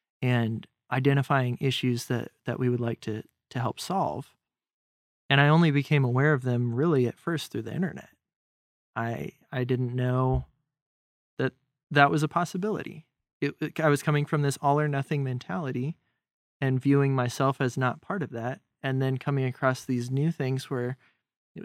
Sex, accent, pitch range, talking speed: male, American, 120-145 Hz, 170 wpm